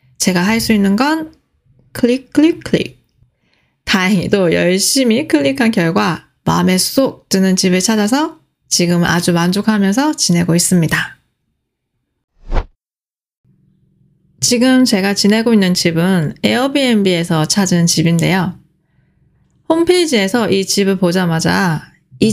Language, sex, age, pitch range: Korean, female, 20-39, 175-245 Hz